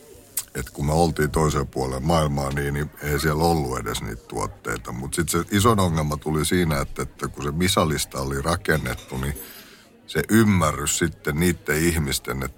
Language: Finnish